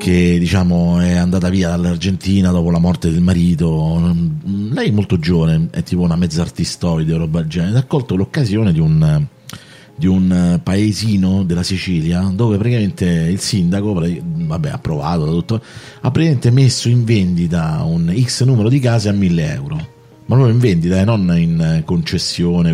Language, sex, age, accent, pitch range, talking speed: Italian, male, 30-49, native, 85-115 Hz, 165 wpm